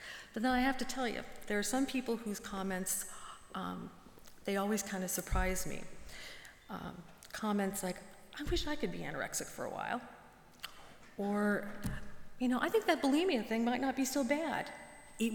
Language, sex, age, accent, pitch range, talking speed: English, female, 40-59, American, 190-240 Hz, 180 wpm